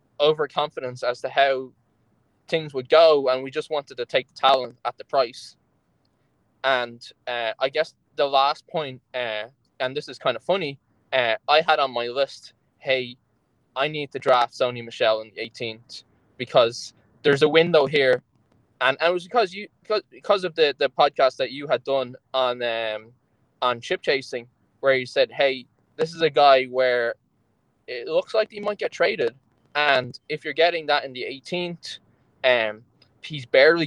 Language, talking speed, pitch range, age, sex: English, 175 wpm, 120-155 Hz, 10-29, male